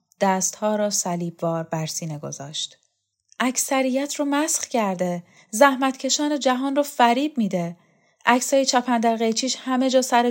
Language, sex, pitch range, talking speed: Persian, female, 215-275 Hz, 130 wpm